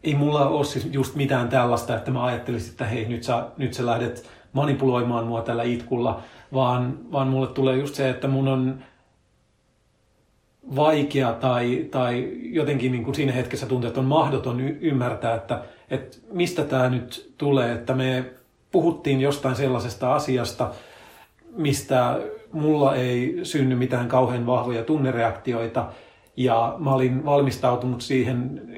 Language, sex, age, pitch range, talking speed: Finnish, male, 40-59, 120-135 Hz, 140 wpm